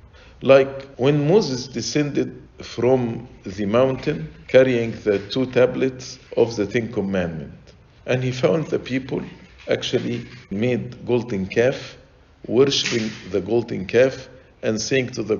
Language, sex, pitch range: English, male, 105-140 Hz